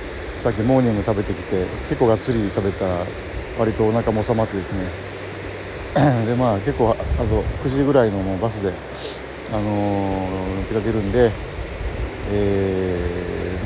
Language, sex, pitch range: Japanese, male, 95-120 Hz